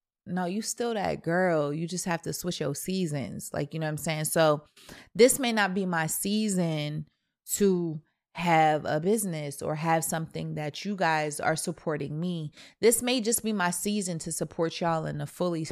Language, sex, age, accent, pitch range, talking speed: English, female, 20-39, American, 160-195 Hz, 190 wpm